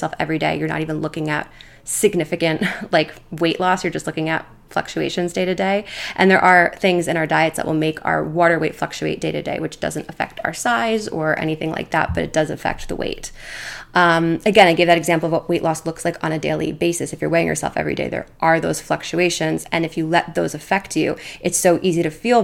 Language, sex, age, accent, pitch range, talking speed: English, female, 20-39, American, 160-205 Hz, 240 wpm